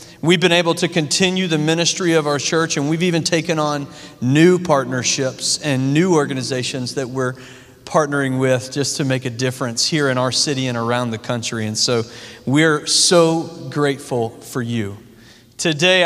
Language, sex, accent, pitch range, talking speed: English, male, American, 135-165 Hz, 170 wpm